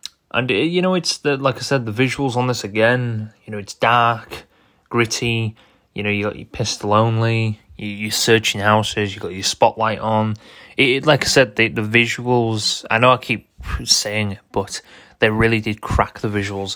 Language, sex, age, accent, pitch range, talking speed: English, male, 20-39, British, 100-115 Hz, 195 wpm